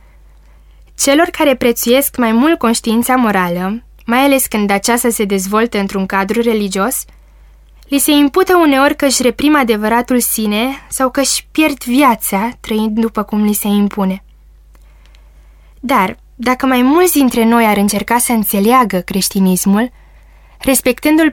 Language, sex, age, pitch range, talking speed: Romanian, female, 20-39, 195-250 Hz, 135 wpm